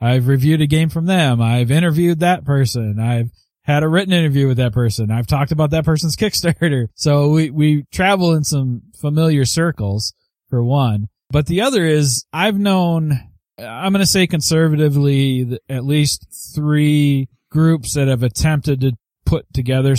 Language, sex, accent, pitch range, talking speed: English, male, American, 120-150 Hz, 165 wpm